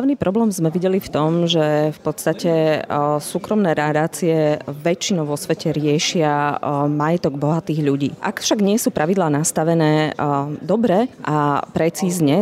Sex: female